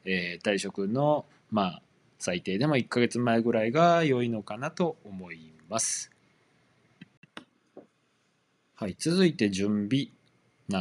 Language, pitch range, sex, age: Japanese, 95-145 Hz, male, 20-39